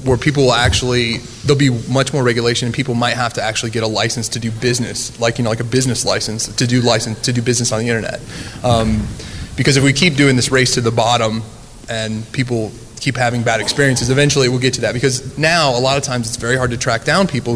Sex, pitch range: male, 115-140 Hz